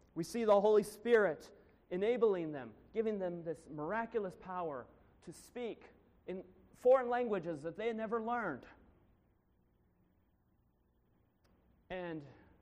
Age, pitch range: 30-49, 135-200 Hz